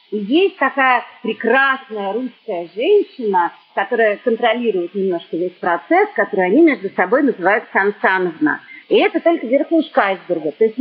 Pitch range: 205-280 Hz